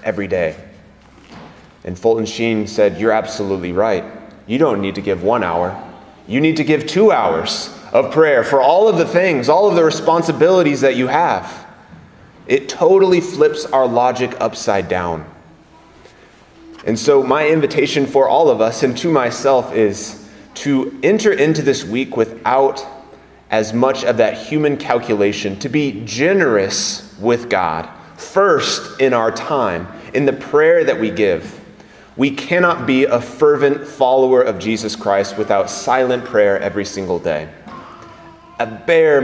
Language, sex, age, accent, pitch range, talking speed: English, male, 30-49, American, 110-150 Hz, 150 wpm